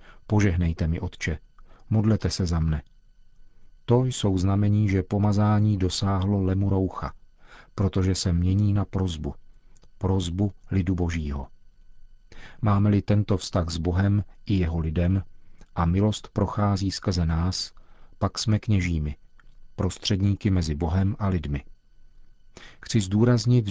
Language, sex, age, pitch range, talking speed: Czech, male, 40-59, 90-100 Hz, 115 wpm